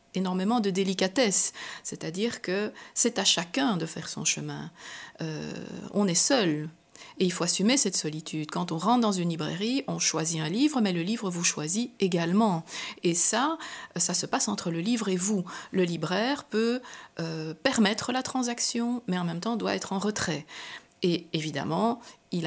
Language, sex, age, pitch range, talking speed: French, female, 50-69, 170-235 Hz, 175 wpm